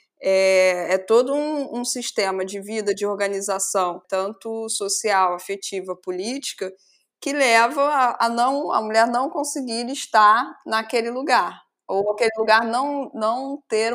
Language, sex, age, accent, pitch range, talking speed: Portuguese, female, 20-39, Brazilian, 180-235 Hz, 130 wpm